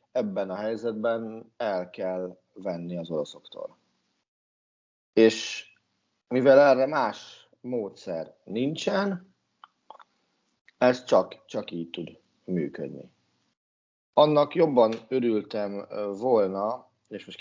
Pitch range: 95-115 Hz